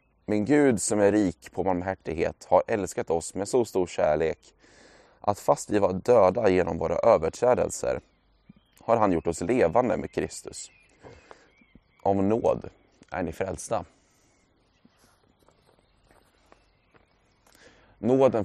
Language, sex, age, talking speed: Swedish, male, 20-39, 115 wpm